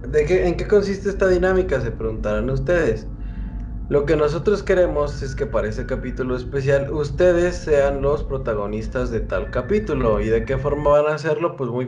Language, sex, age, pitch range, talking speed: Spanish, male, 20-39, 115-155 Hz, 180 wpm